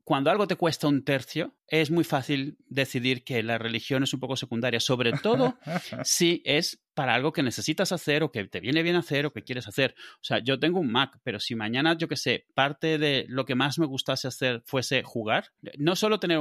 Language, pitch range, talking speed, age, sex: Spanish, 130-160 Hz, 225 wpm, 30-49, male